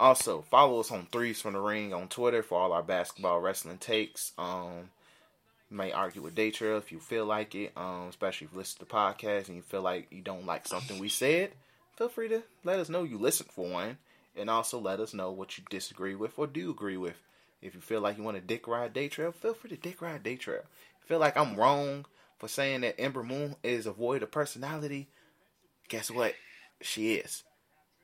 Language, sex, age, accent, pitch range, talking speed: English, male, 20-39, American, 100-130 Hz, 225 wpm